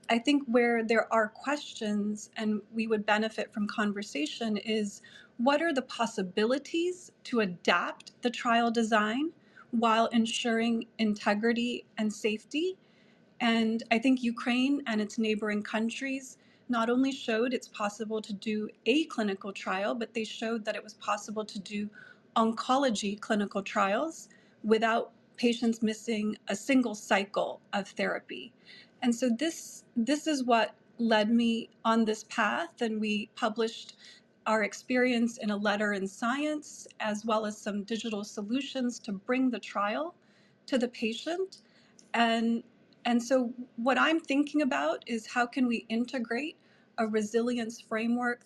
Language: English